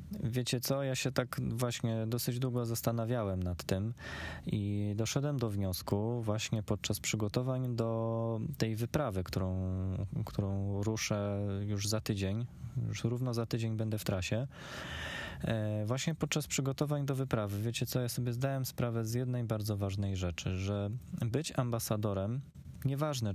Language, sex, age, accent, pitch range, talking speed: Polish, male, 20-39, native, 95-120 Hz, 140 wpm